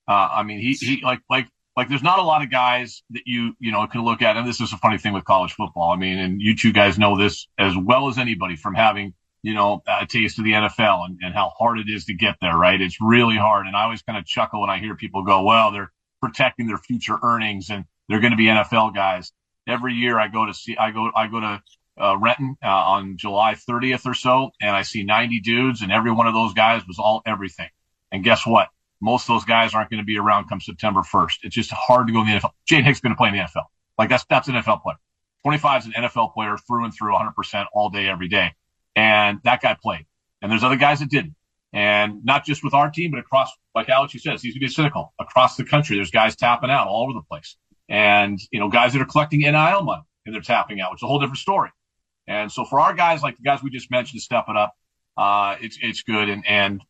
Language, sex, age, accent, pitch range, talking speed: English, male, 40-59, American, 105-125 Hz, 265 wpm